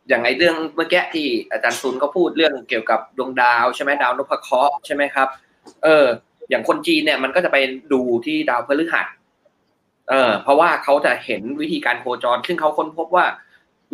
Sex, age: male, 20-39